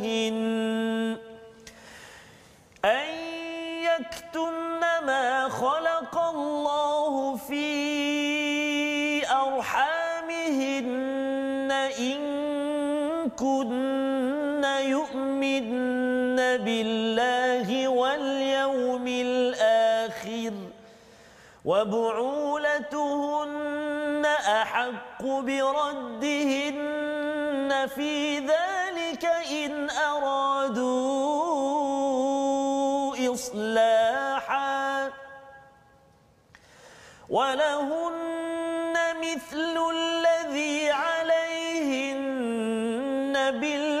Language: Malayalam